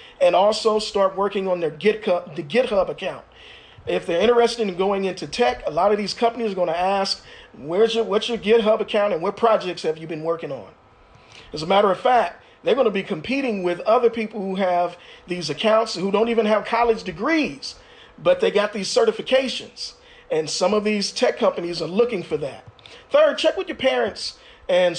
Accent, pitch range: American, 175-225 Hz